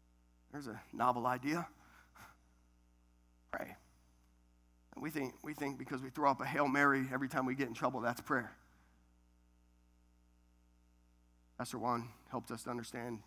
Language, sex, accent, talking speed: English, male, American, 140 wpm